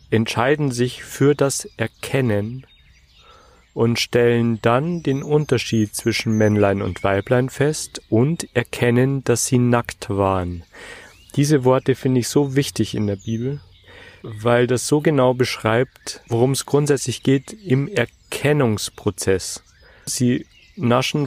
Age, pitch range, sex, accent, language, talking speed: 40-59, 105-130 Hz, male, German, German, 120 wpm